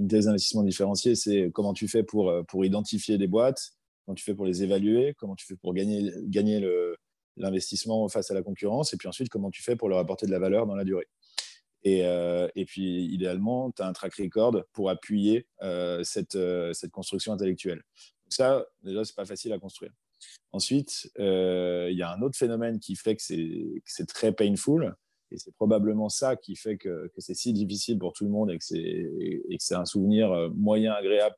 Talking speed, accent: 225 wpm, French